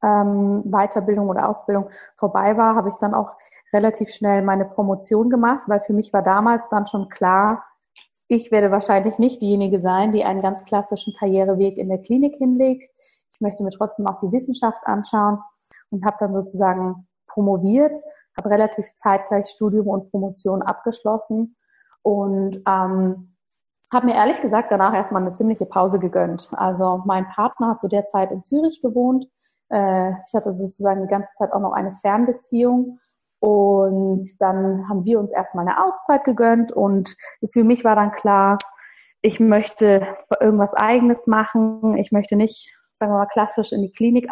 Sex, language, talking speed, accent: female, German, 165 wpm, German